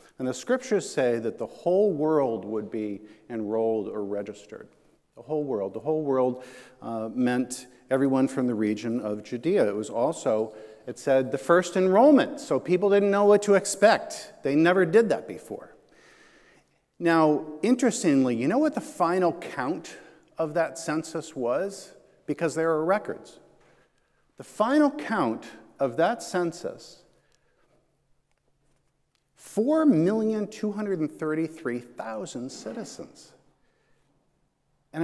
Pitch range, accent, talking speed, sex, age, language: 135-215 Hz, American, 125 wpm, male, 50-69, English